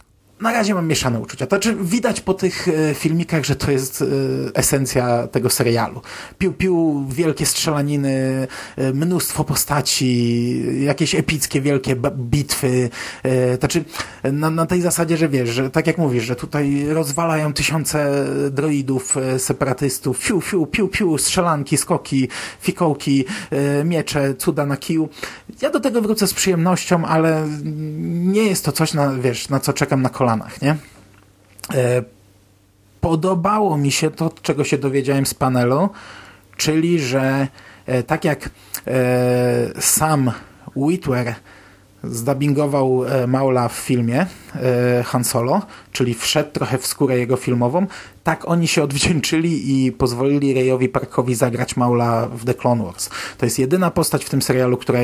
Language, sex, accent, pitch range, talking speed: Polish, male, native, 125-155 Hz, 135 wpm